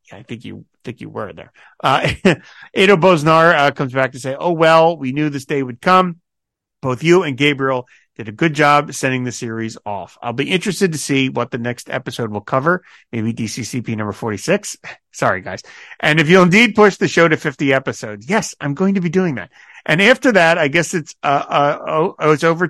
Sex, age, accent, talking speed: male, 50-69, American, 210 wpm